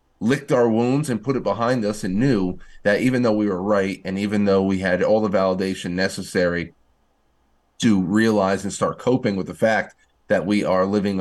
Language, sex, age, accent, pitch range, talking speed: English, male, 30-49, American, 95-110 Hz, 200 wpm